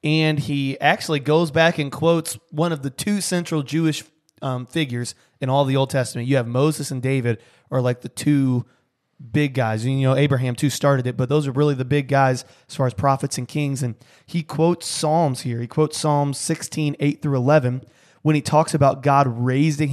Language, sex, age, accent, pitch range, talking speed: English, male, 20-39, American, 130-155 Hz, 205 wpm